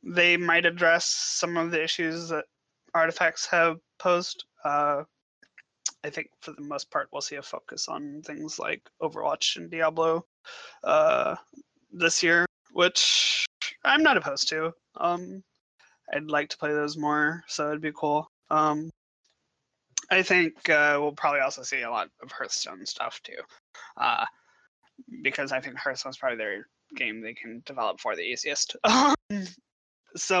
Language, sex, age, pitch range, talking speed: English, male, 20-39, 150-190 Hz, 150 wpm